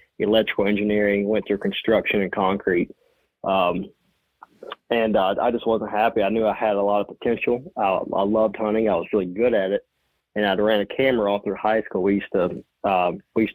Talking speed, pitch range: 210 wpm, 100-110 Hz